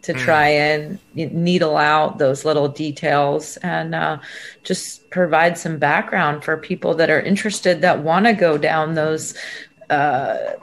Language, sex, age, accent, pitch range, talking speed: English, female, 30-49, American, 150-175 Hz, 145 wpm